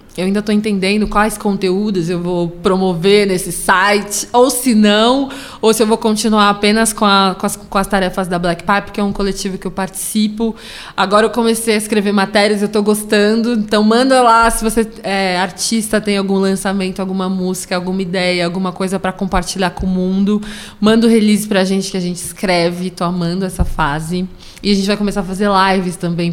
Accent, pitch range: Brazilian, 185-230 Hz